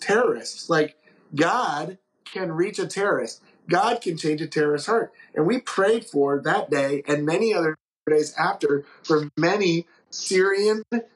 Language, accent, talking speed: English, American, 145 wpm